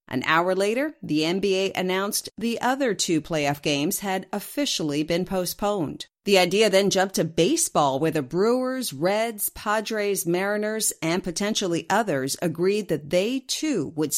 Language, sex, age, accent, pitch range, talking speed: English, female, 40-59, American, 160-210 Hz, 150 wpm